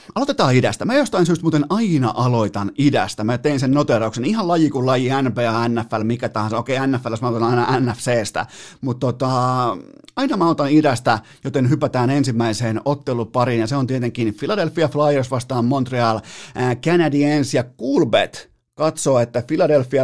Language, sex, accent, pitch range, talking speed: Finnish, male, native, 120-150 Hz, 155 wpm